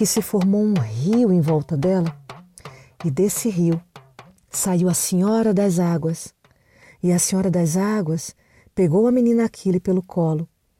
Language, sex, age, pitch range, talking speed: Portuguese, female, 40-59, 165-205 Hz, 150 wpm